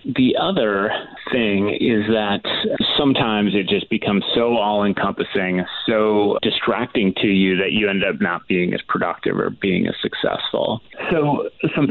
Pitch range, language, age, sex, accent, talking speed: 100-115 Hz, English, 30-49, male, American, 145 wpm